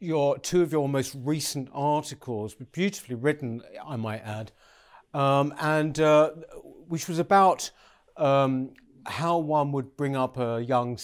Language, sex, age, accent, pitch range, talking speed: English, male, 50-69, British, 130-170 Hz, 140 wpm